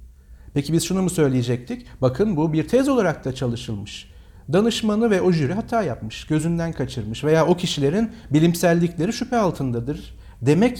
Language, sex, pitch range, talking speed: Turkish, male, 130-185 Hz, 150 wpm